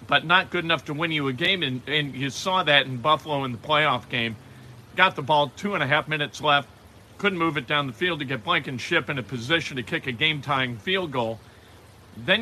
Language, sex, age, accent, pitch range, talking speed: English, male, 50-69, American, 120-170 Hz, 240 wpm